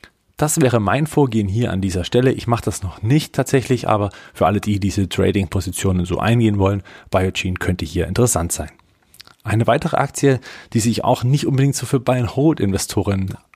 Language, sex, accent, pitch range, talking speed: German, male, German, 95-120 Hz, 175 wpm